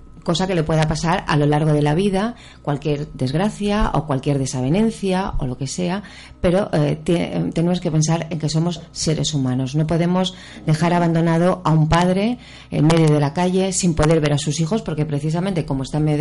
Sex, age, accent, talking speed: female, 30-49, Spanish, 200 wpm